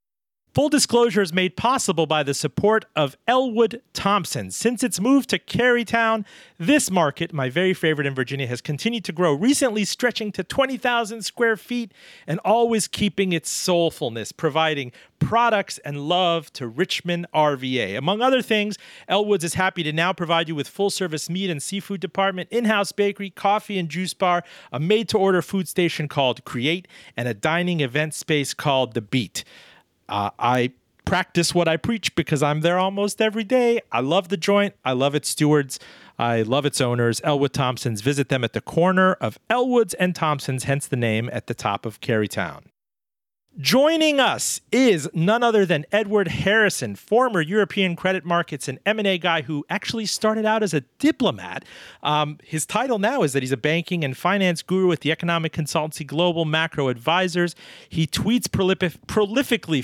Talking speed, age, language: 170 wpm, 40-59, English